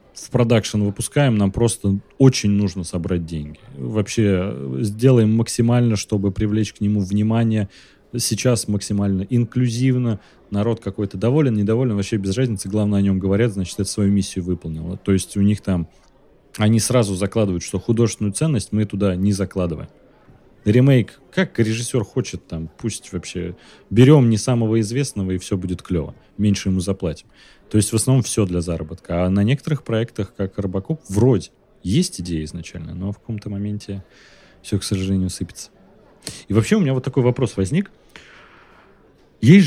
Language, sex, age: Russian, male, 30-49